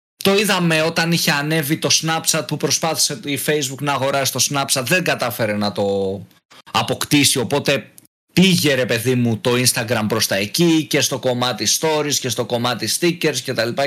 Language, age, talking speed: Greek, 20-39, 175 wpm